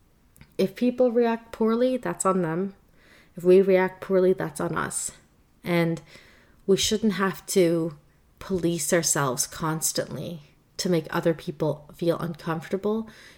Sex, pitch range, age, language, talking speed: female, 155-185 Hz, 30-49, English, 125 wpm